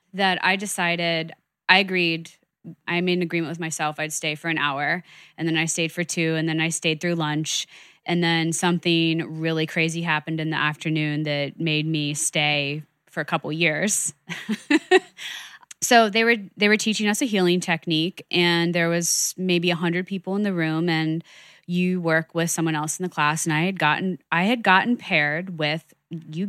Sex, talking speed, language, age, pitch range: female, 190 wpm, English, 20-39, 160-180 Hz